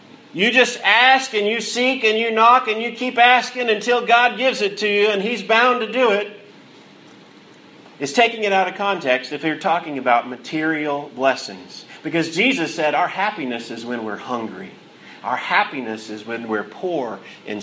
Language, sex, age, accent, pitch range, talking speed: English, male, 40-59, American, 145-205 Hz, 180 wpm